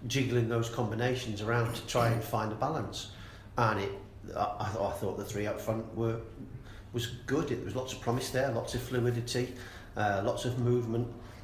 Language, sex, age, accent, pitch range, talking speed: English, male, 40-59, British, 100-120 Hz, 190 wpm